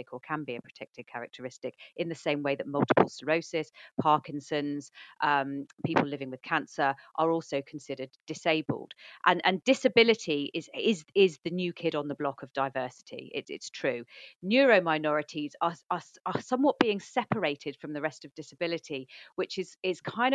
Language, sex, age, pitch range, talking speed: English, female, 40-59, 145-190 Hz, 160 wpm